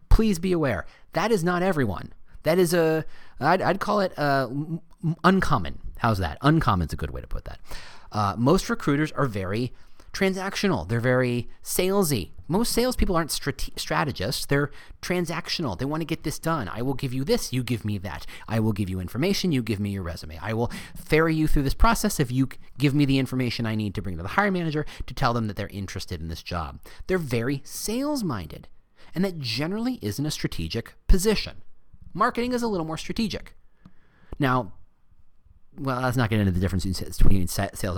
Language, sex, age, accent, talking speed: English, male, 30-49, American, 195 wpm